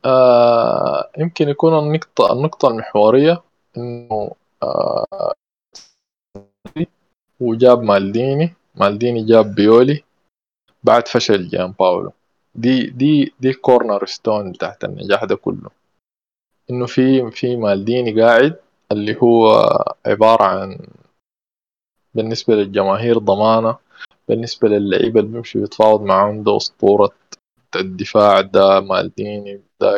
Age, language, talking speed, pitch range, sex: 20-39, Arabic, 100 wpm, 105-130 Hz, male